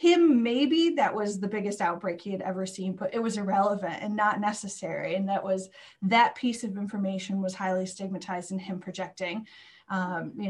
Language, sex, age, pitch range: English, female, 20-39, 185-210 Hz